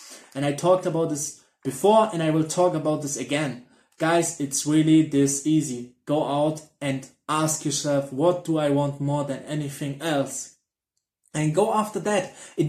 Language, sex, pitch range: English, male, 145-190 Hz